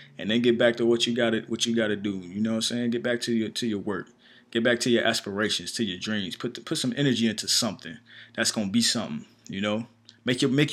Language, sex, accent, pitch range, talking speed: English, male, American, 105-120 Hz, 280 wpm